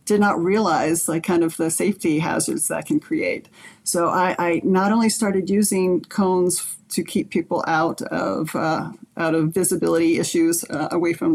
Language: English